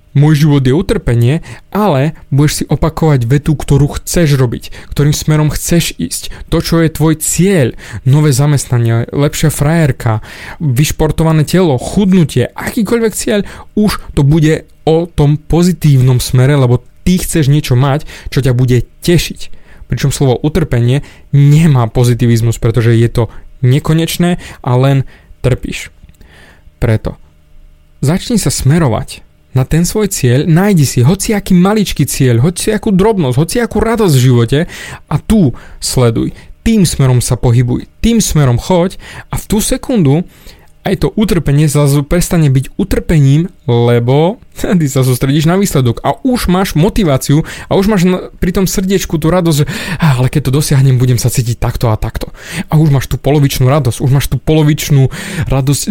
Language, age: Slovak, 20-39